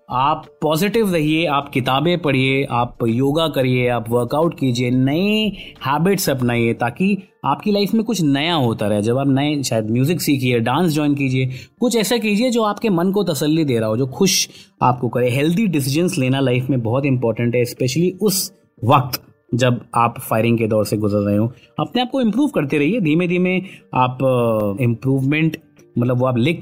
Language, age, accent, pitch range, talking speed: Hindi, 30-49, native, 125-170 Hz, 185 wpm